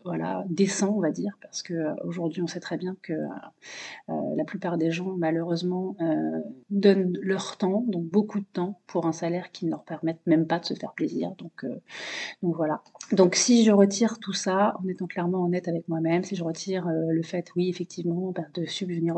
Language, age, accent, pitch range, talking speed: French, 30-49, French, 165-185 Hz, 210 wpm